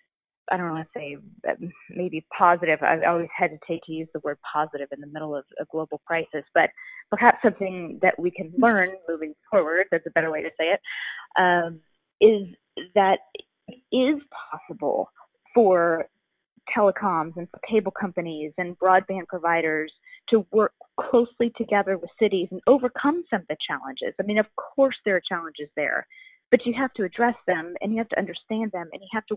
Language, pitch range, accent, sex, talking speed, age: English, 165-220 Hz, American, female, 180 wpm, 30-49